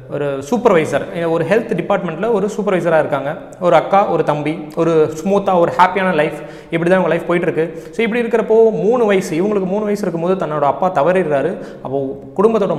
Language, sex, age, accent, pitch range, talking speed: Tamil, male, 30-49, native, 155-190 Hz, 165 wpm